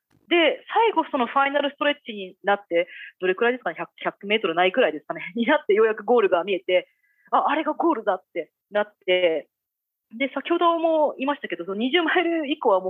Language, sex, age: Japanese, female, 30-49